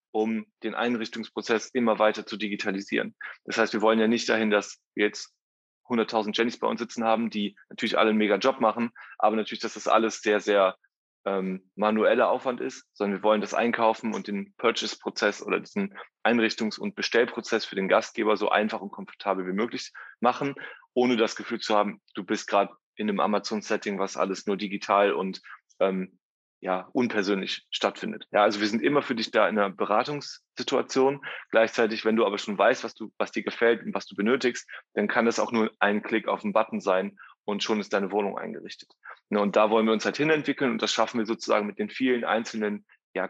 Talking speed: 200 wpm